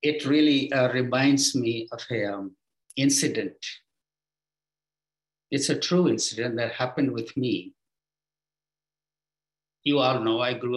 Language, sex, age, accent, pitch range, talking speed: English, male, 50-69, Indian, 130-155 Hz, 125 wpm